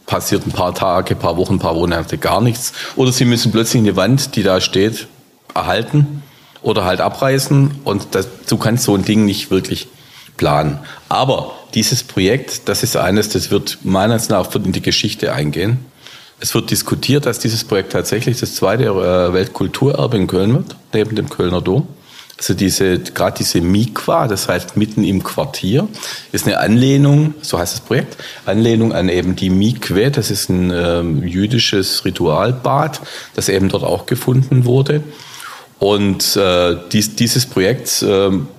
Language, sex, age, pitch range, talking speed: German, male, 40-59, 95-135 Hz, 165 wpm